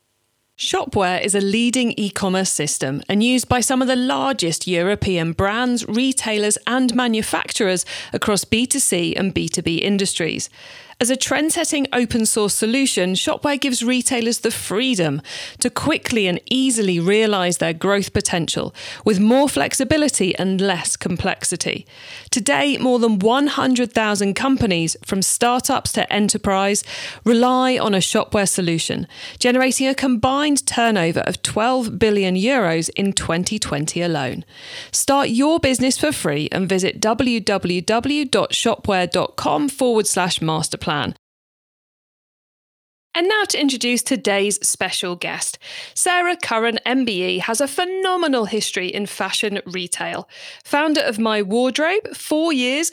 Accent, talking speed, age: British, 120 wpm, 40-59